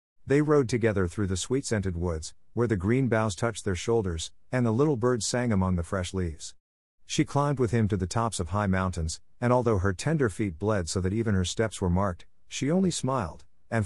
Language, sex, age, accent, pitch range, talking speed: English, male, 50-69, American, 90-120 Hz, 215 wpm